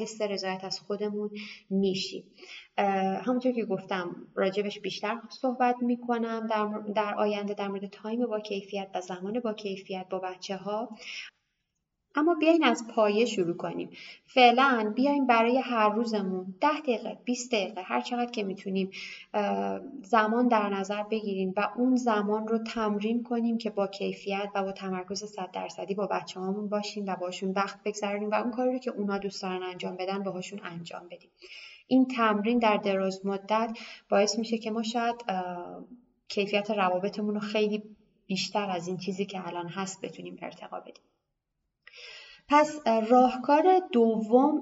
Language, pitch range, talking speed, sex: Persian, 190-240 Hz, 150 wpm, female